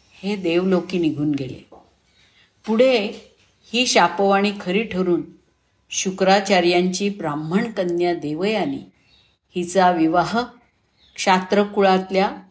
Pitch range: 170-210 Hz